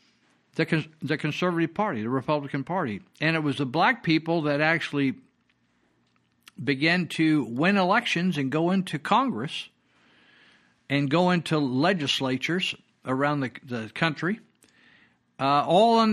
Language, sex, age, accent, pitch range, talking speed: English, male, 60-79, American, 130-185 Hz, 125 wpm